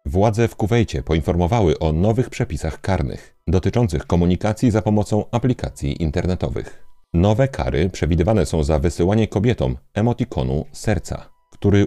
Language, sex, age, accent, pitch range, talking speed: Polish, male, 40-59, native, 85-110 Hz, 120 wpm